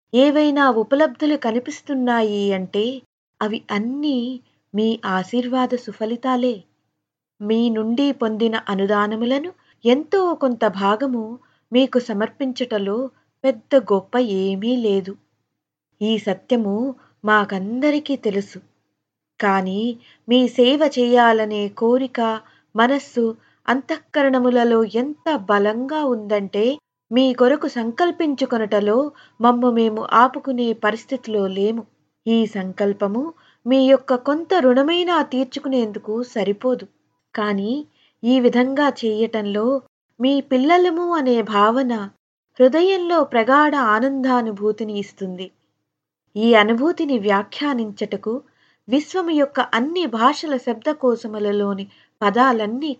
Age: 20-39